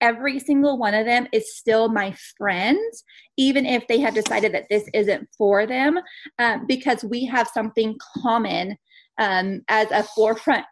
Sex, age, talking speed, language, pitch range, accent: female, 20-39, 160 wpm, English, 210-250 Hz, American